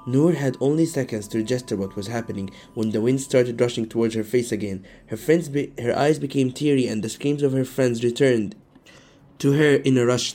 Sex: male